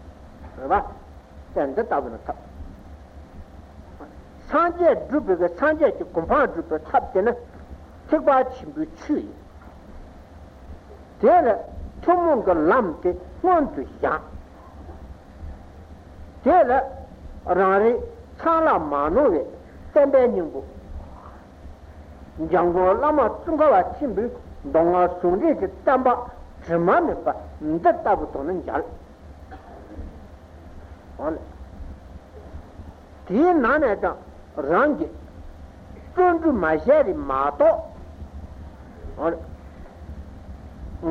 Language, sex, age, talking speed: Italian, male, 60-79, 40 wpm